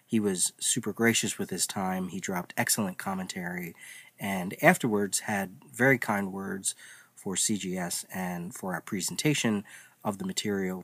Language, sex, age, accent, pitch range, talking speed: English, male, 40-59, American, 95-130 Hz, 145 wpm